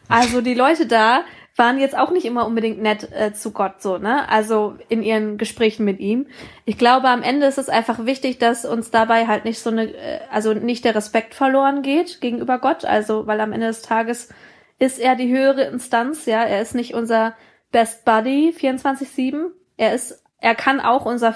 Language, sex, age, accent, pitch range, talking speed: German, female, 20-39, German, 220-260 Hz, 195 wpm